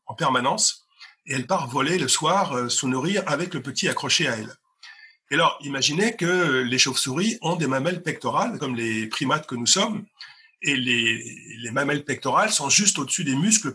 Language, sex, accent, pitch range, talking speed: French, male, French, 135-185 Hz, 190 wpm